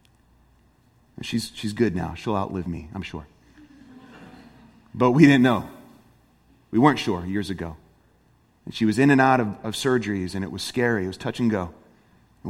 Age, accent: 30-49, American